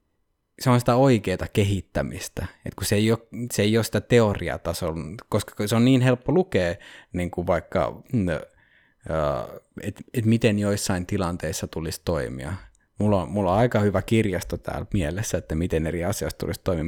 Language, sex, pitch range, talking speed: Finnish, male, 90-110 Hz, 165 wpm